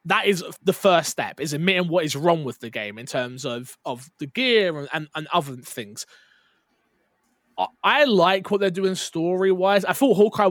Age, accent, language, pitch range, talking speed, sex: 20-39, British, English, 145-195 Hz, 195 wpm, male